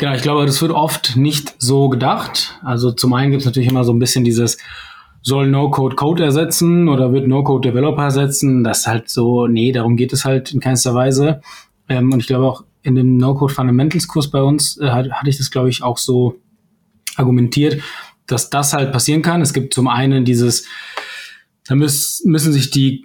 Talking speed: 190 wpm